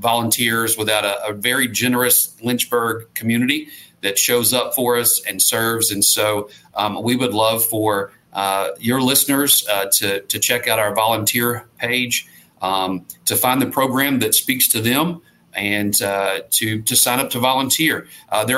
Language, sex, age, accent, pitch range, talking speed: English, male, 40-59, American, 105-130 Hz, 170 wpm